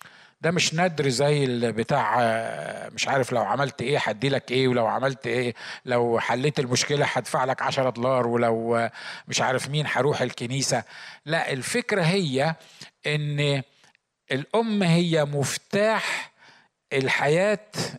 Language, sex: Arabic, male